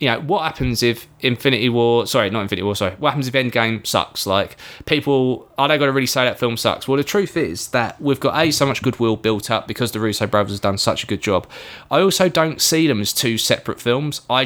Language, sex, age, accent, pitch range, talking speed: English, male, 20-39, British, 115-150 Hz, 255 wpm